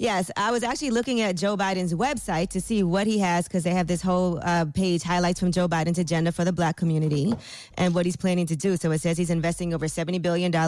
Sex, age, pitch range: female, 20-39, 165-185 Hz